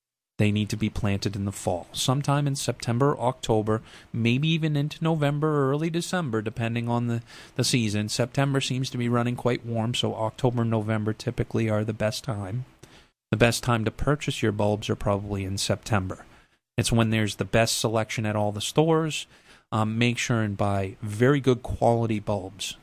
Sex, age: male, 30-49